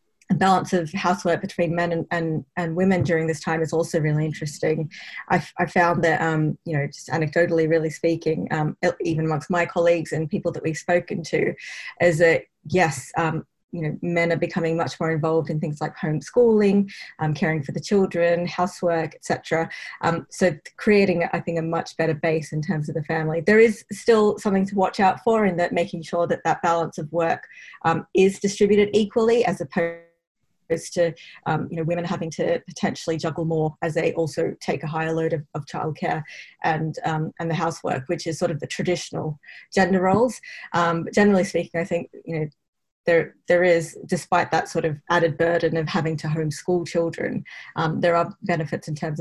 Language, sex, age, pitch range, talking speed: English, female, 30-49, 160-180 Hz, 200 wpm